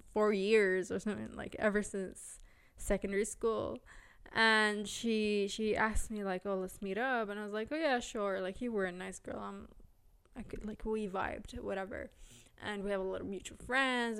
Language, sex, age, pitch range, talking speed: English, female, 20-39, 190-225 Hz, 200 wpm